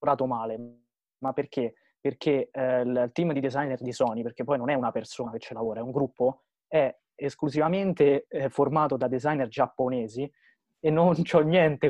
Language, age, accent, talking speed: Italian, 20-39, native, 170 wpm